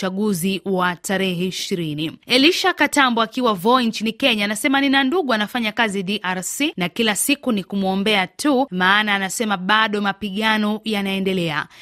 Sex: female